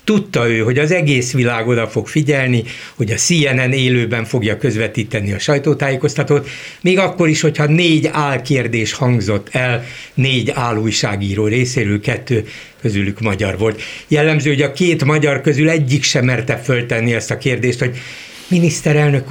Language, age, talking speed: Hungarian, 60-79, 150 wpm